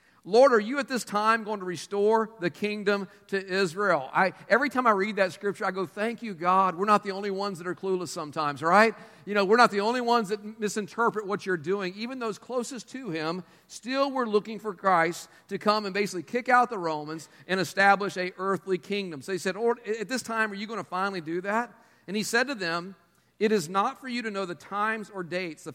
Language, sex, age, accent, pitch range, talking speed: English, male, 50-69, American, 170-215 Hz, 235 wpm